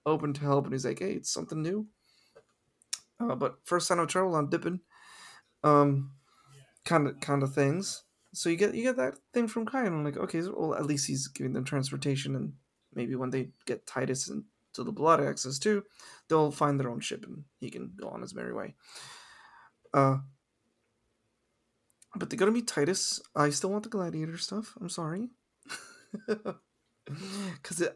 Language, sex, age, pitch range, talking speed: English, male, 20-39, 135-175 Hz, 180 wpm